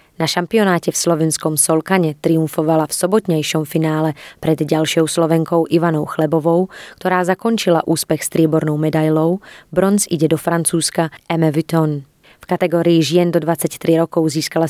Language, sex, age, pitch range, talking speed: Slovak, female, 20-39, 155-180 Hz, 130 wpm